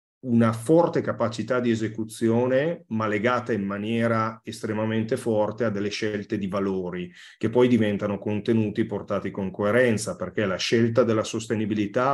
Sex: male